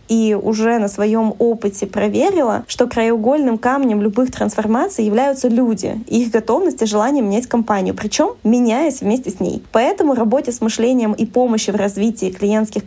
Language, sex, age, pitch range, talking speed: Russian, female, 20-39, 210-260 Hz, 160 wpm